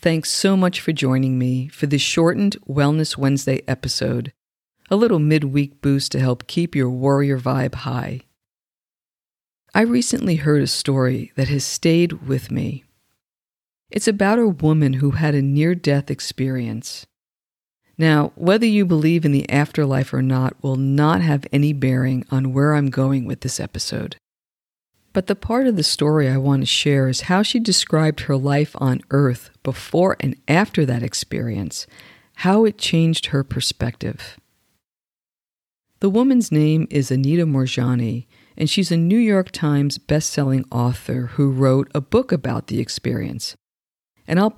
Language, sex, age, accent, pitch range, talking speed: English, female, 50-69, American, 130-170 Hz, 155 wpm